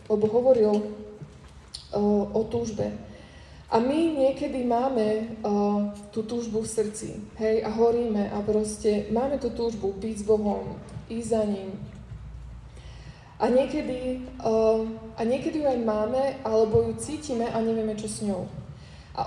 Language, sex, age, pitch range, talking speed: Slovak, female, 20-39, 200-235 Hz, 135 wpm